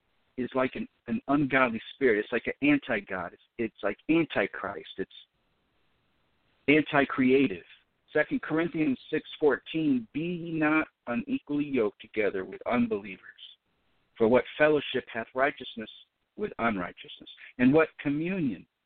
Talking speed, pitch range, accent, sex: 120 wpm, 125-160 Hz, American, male